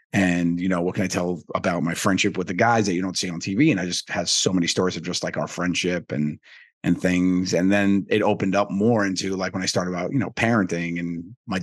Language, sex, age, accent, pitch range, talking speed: English, male, 30-49, American, 90-100 Hz, 265 wpm